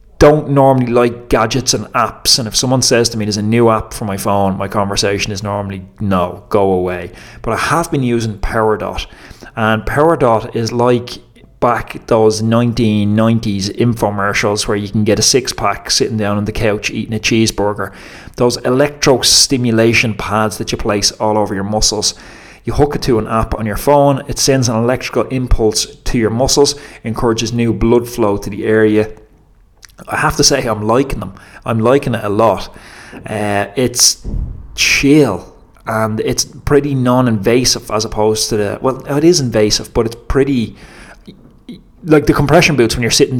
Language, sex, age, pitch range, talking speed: English, male, 30-49, 105-125 Hz, 175 wpm